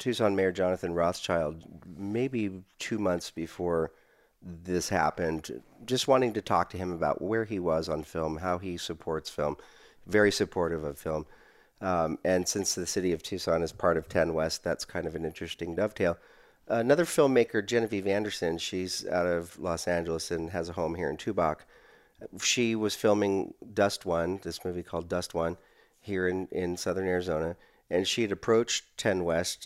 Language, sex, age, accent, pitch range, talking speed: English, male, 40-59, American, 85-100 Hz, 170 wpm